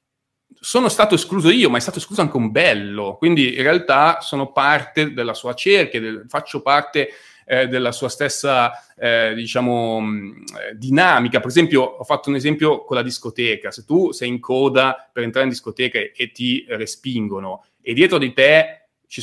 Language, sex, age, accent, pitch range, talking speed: Italian, male, 30-49, native, 115-145 Hz, 175 wpm